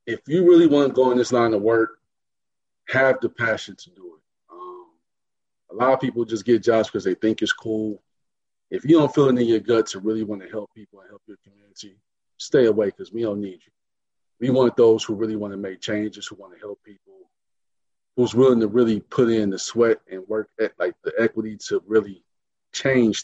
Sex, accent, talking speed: male, American, 220 wpm